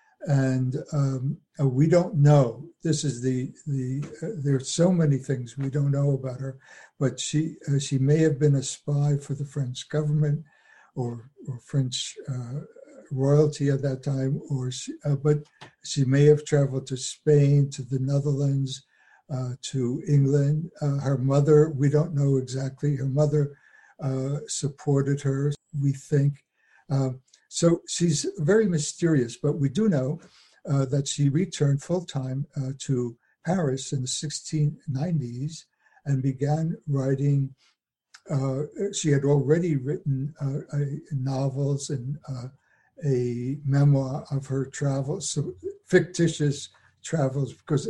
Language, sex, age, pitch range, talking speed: English, male, 60-79, 135-150 Hz, 145 wpm